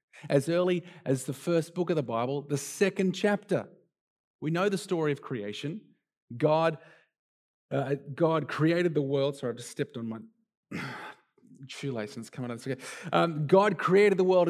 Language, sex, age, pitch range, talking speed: English, male, 30-49, 145-190 Hz, 165 wpm